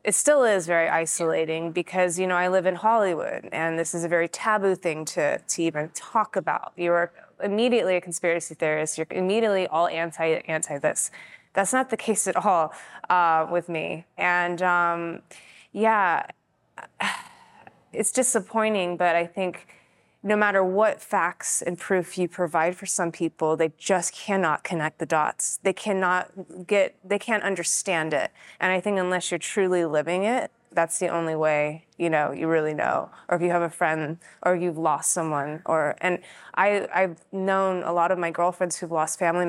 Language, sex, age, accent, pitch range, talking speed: English, female, 20-39, American, 160-185 Hz, 175 wpm